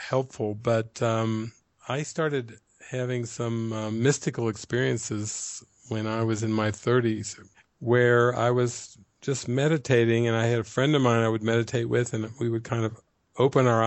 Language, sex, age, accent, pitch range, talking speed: English, male, 50-69, American, 110-140 Hz, 170 wpm